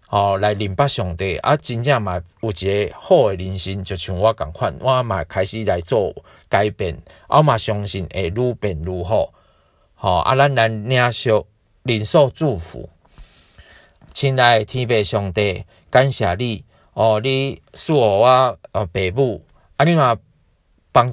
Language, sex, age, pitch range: Chinese, male, 40-59, 105-140 Hz